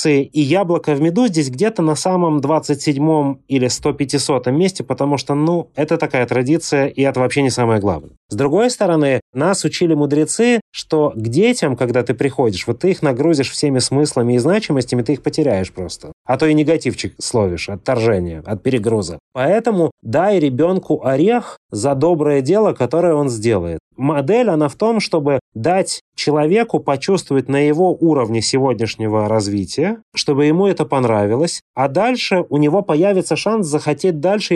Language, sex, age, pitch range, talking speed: Russian, male, 30-49, 125-165 Hz, 160 wpm